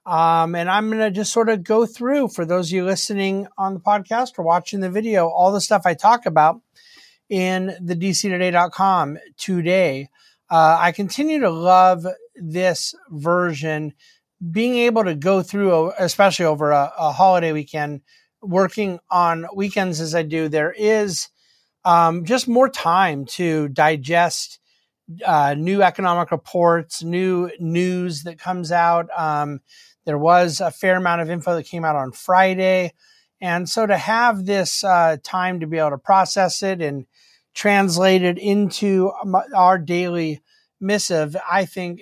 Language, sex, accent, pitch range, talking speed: English, male, American, 165-195 Hz, 155 wpm